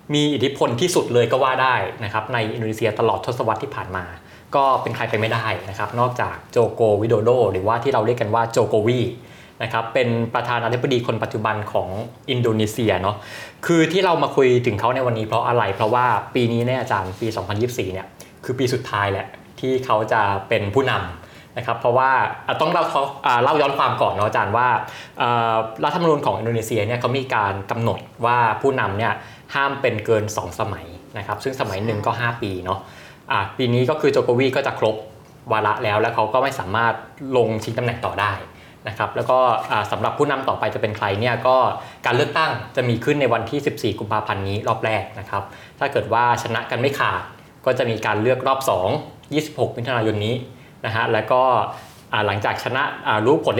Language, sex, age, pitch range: Thai, male, 20-39, 110-130 Hz